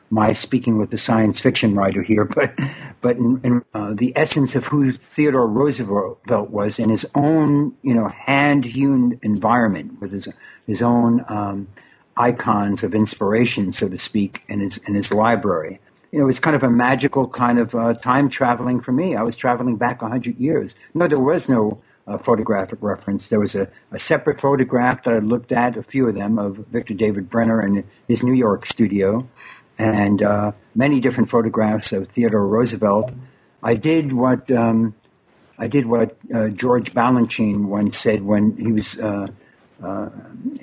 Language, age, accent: English, 60-79, American